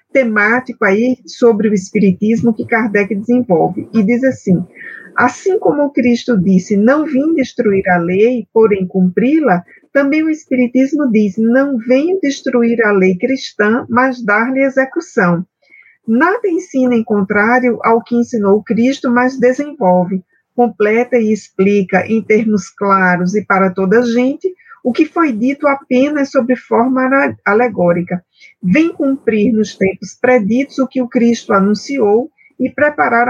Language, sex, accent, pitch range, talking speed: Portuguese, female, Brazilian, 210-265 Hz, 140 wpm